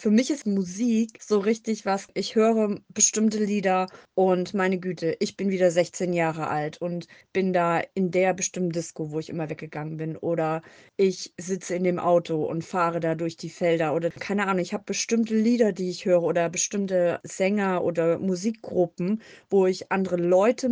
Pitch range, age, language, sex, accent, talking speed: 170-200 Hz, 30-49, German, female, German, 180 wpm